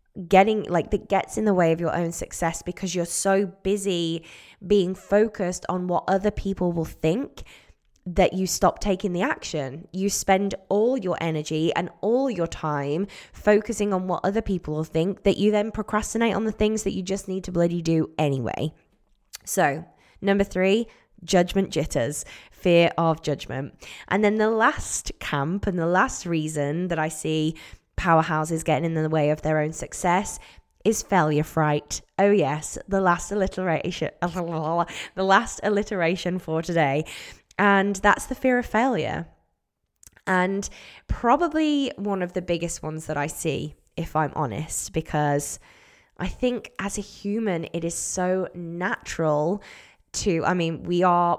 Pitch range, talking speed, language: 160-200 Hz, 160 wpm, English